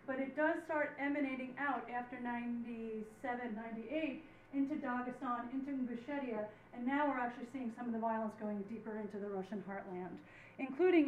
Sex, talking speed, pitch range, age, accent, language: female, 155 wpm, 225-275 Hz, 40-59, American, English